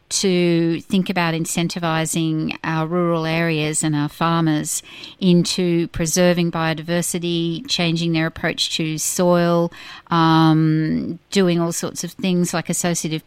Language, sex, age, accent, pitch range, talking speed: English, female, 50-69, Australian, 165-190 Hz, 120 wpm